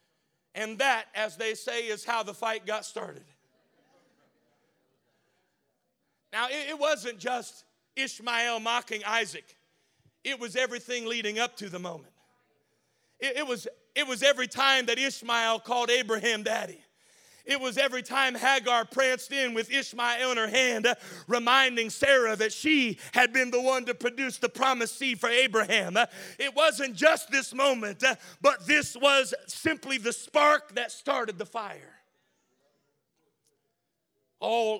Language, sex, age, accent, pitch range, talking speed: English, male, 40-59, American, 225-270 Hz, 140 wpm